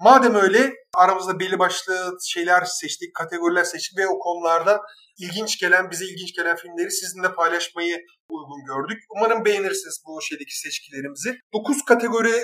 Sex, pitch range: male, 165-215 Hz